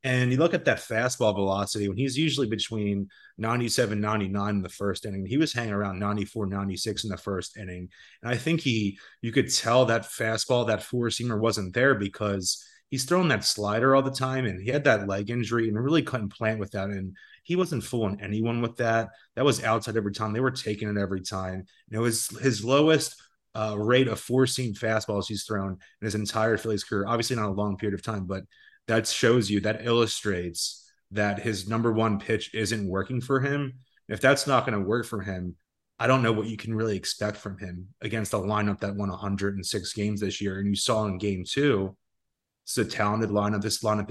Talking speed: 210 wpm